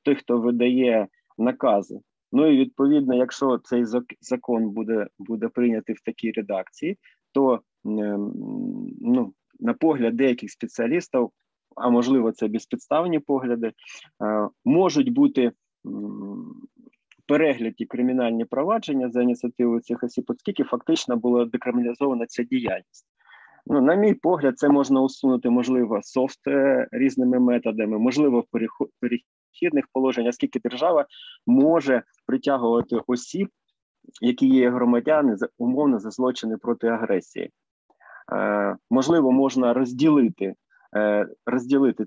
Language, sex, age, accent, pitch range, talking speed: Ukrainian, male, 20-39, native, 120-145 Hz, 105 wpm